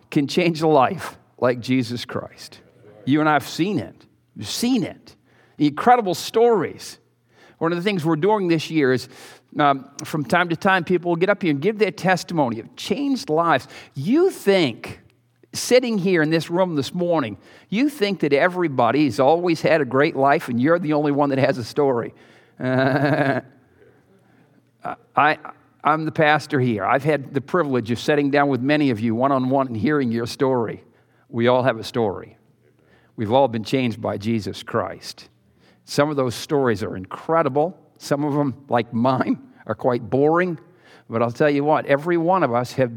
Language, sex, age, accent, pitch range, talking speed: English, male, 50-69, American, 130-175 Hz, 180 wpm